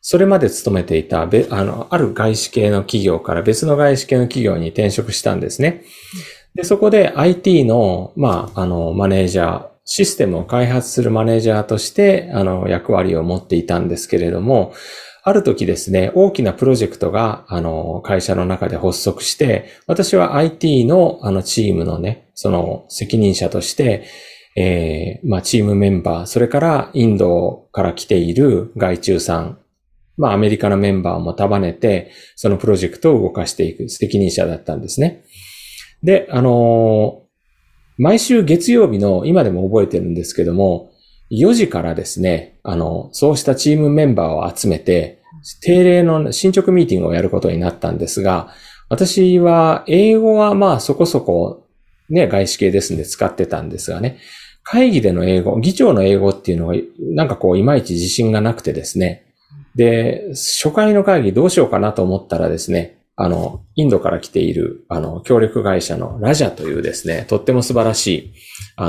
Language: Japanese